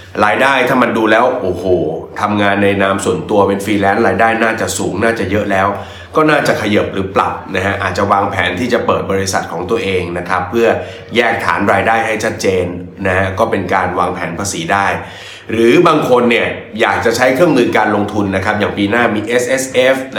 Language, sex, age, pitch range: Thai, male, 20-39, 95-110 Hz